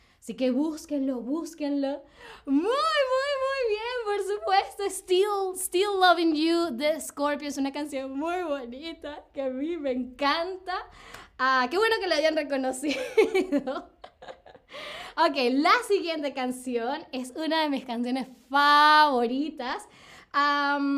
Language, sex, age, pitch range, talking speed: Spanish, female, 20-39, 265-335 Hz, 125 wpm